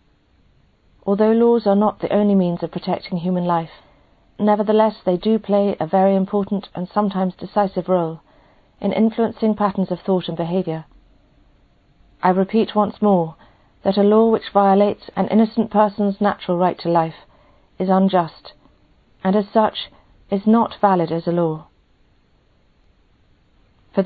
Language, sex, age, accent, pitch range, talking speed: English, female, 40-59, British, 175-210 Hz, 140 wpm